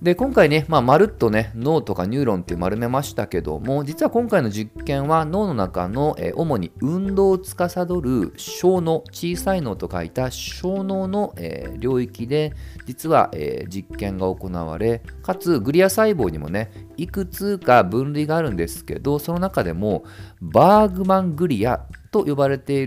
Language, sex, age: Japanese, male, 40-59